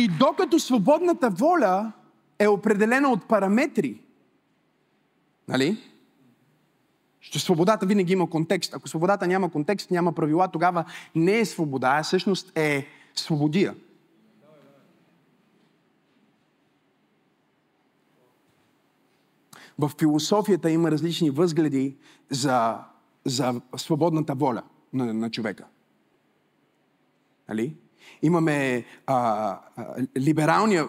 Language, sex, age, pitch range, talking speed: Bulgarian, male, 30-49, 135-185 Hz, 85 wpm